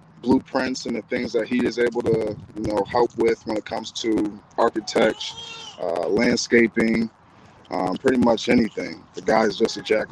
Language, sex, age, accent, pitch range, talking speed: English, male, 20-39, American, 110-120 Hz, 180 wpm